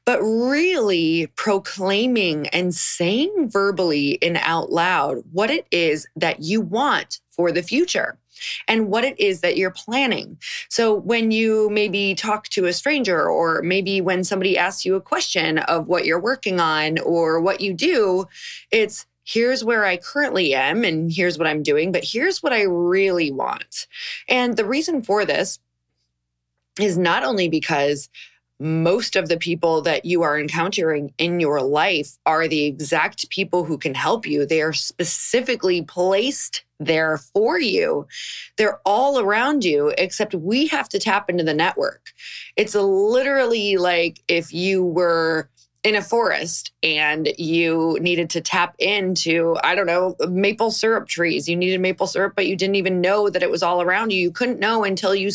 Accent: American